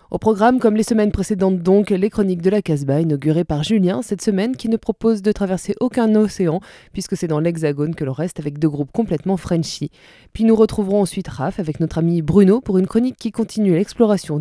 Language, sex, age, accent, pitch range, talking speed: French, female, 20-39, French, 165-210 Hz, 210 wpm